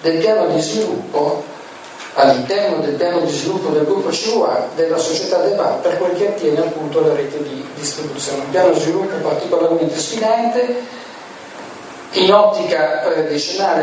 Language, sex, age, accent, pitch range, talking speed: Italian, male, 40-59, native, 155-205 Hz, 150 wpm